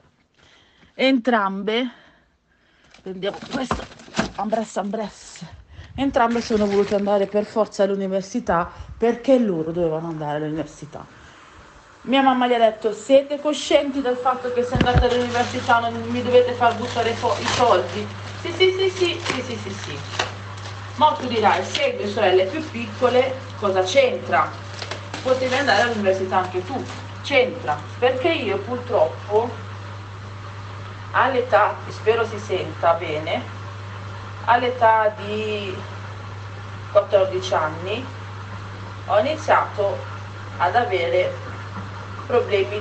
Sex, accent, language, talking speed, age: female, native, Italian, 110 wpm, 40-59